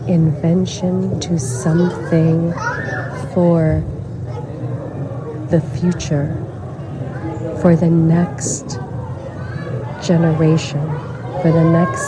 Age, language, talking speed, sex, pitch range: 40-59, English, 65 wpm, female, 130-165 Hz